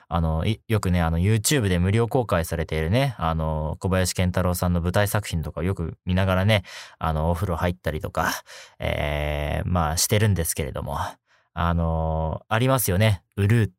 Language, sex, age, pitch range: Japanese, male, 20-39, 85-115 Hz